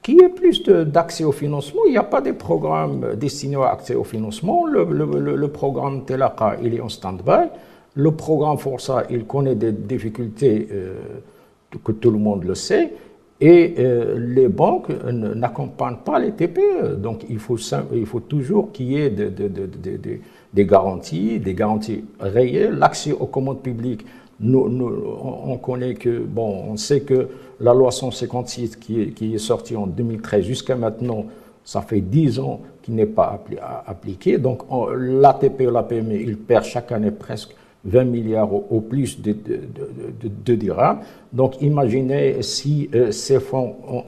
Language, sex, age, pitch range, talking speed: French, male, 60-79, 110-135 Hz, 175 wpm